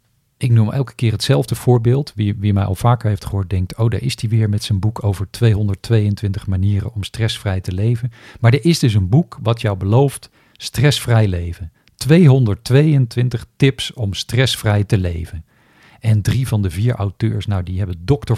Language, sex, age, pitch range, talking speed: Dutch, male, 50-69, 100-135 Hz, 185 wpm